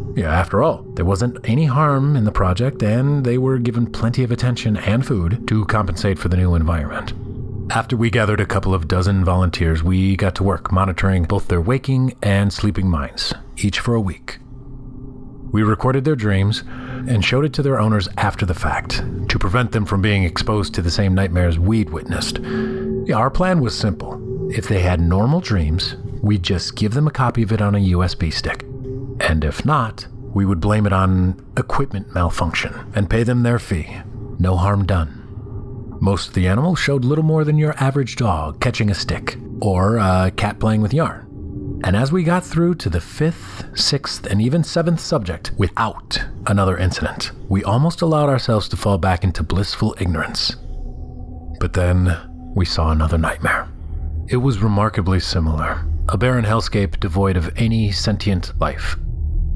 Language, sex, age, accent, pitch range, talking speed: English, male, 30-49, American, 95-125 Hz, 175 wpm